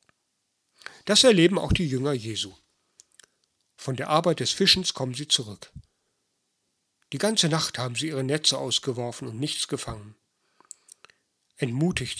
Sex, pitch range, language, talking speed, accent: male, 130-165 Hz, German, 130 wpm, German